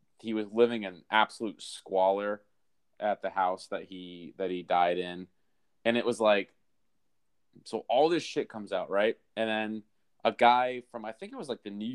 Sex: male